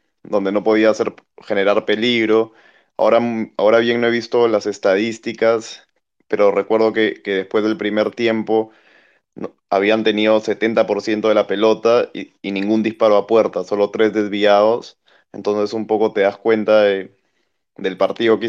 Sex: male